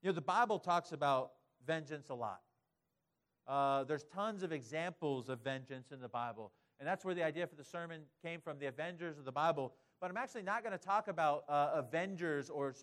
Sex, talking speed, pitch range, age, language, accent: male, 210 wpm, 140-195 Hz, 40-59, English, American